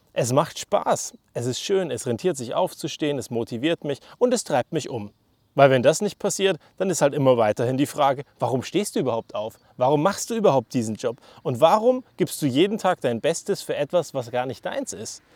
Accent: German